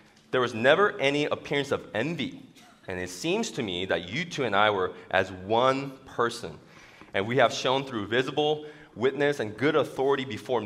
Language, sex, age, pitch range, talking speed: English, male, 20-39, 105-145 Hz, 180 wpm